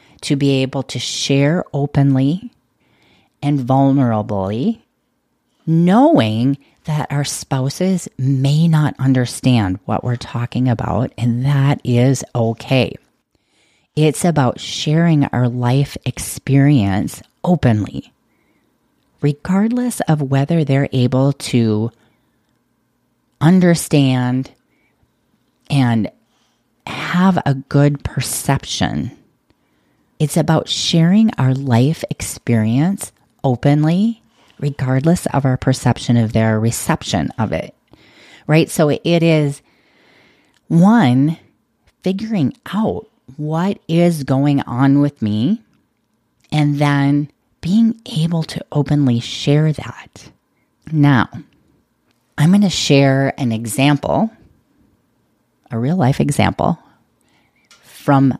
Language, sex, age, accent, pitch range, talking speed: English, female, 30-49, American, 125-160 Hz, 95 wpm